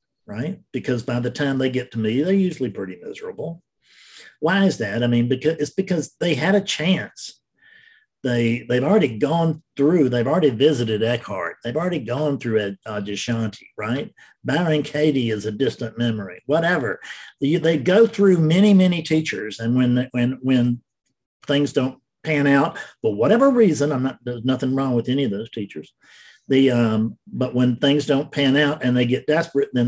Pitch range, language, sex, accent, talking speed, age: 115-155 Hz, English, male, American, 180 wpm, 50-69